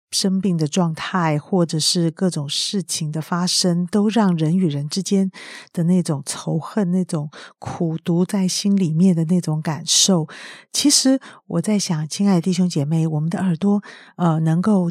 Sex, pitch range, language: female, 160-195 Hz, Chinese